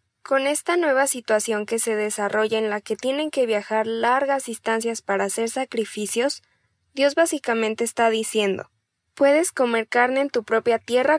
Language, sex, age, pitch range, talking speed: Spanish, female, 10-29, 215-255 Hz, 155 wpm